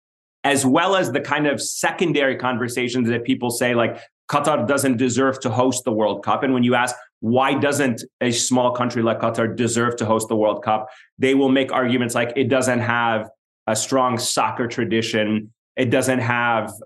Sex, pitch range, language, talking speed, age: male, 115-140 Hz, English, 185 wpm, 30-49